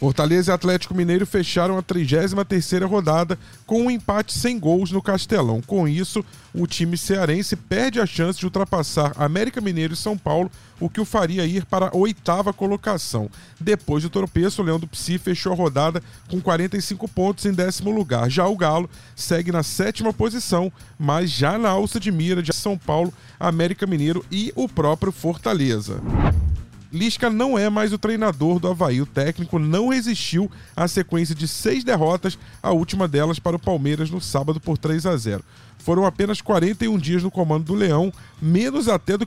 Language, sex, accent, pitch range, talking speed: Portuguese, male, Brazilian, 160-195 Hz, 175 wpm